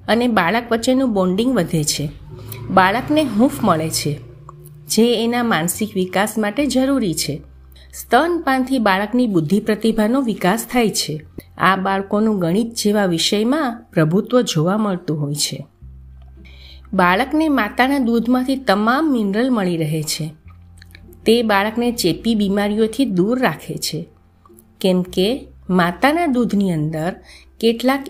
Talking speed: 105 wpm